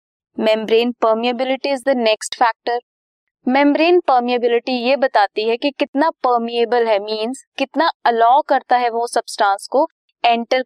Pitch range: 215-285 Hz